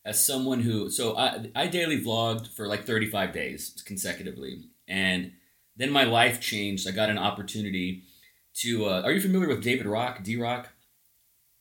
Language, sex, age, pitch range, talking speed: English, male, 30-49, 100-120 Hz, 160 wpm